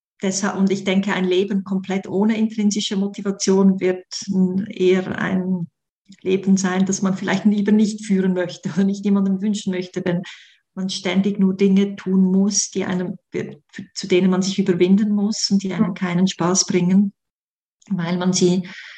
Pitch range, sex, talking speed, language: 185-205 Hz, female, 160 wpm, German